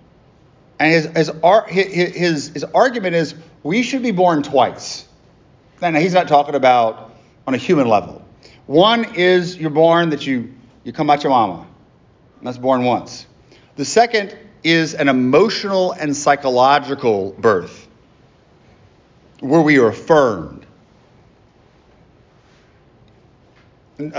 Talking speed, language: 125 wpm, English